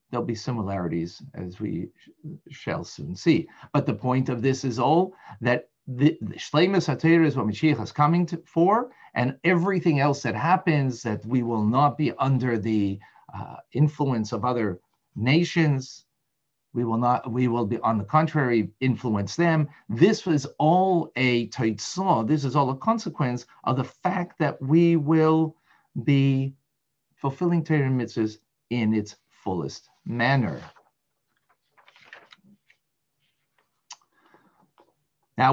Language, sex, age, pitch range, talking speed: English, male, 50-69, 120-160 Hz, 140 wpm